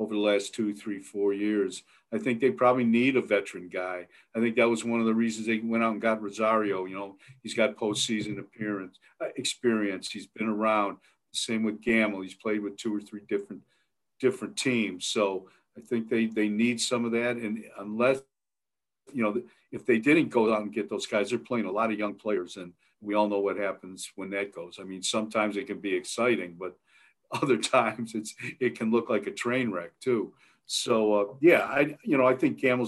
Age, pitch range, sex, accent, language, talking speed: 50-69, 105-130 Hz, male, American, English, 215 wpm